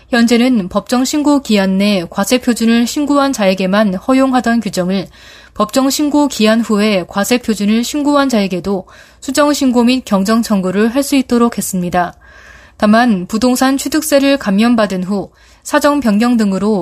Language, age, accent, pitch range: Korean, 20-39, native, 195-255 Hz